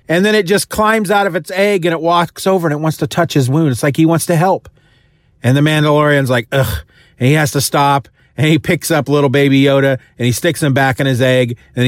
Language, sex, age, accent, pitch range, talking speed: English, male, 40-59, American, 130-185 Hz, 265 wpm